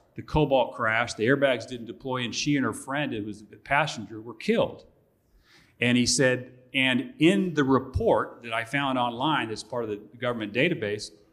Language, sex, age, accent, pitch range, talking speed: English, male, 40-59, American, 120-150 Hz, 185 wpm